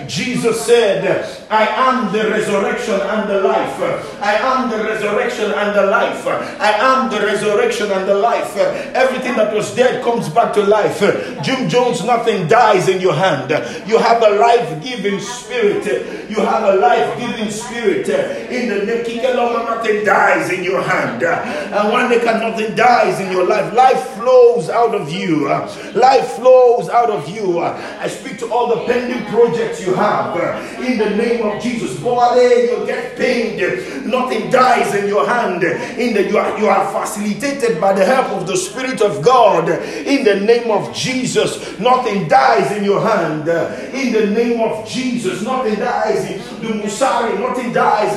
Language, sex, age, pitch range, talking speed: English, male, 50-69, 205-250 Hz, 170 wpm